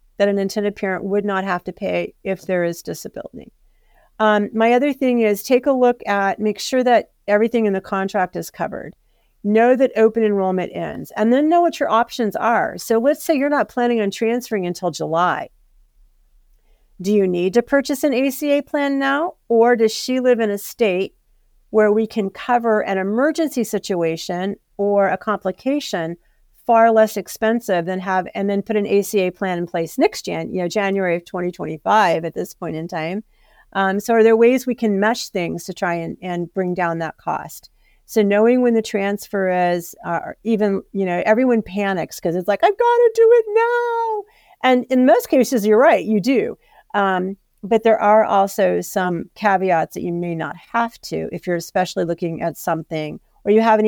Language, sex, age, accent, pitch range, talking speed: English, female, 50-69, American, 185-240 Hz, 195 wpm